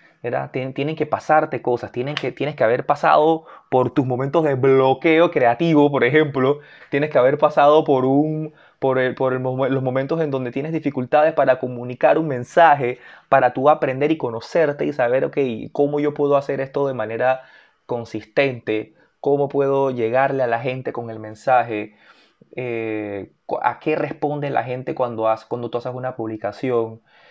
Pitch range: 125-155 Hz